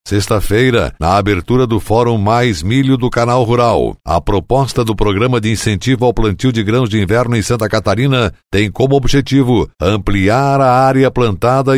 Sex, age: male, 60-79